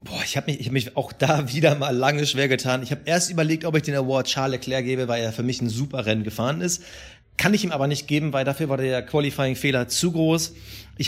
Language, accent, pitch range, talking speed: German, German, 130-165 Hz, 250 wpm